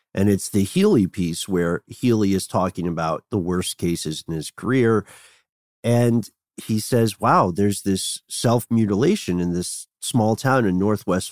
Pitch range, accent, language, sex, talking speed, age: 95-125 Hz, American, English, male, 160 wpm, 50-69